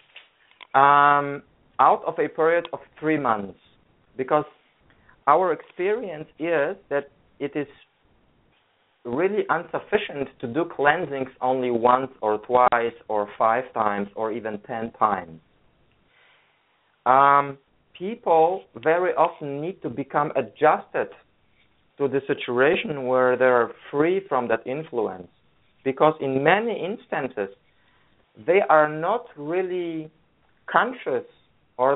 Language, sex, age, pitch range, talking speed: English, male, 40-59, 125-160 Hz, 110 wpm